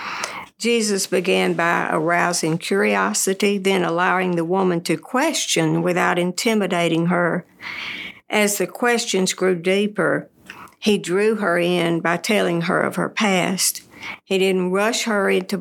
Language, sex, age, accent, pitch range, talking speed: English, female, 60-79, American, 175-210 Hz, 130 wpm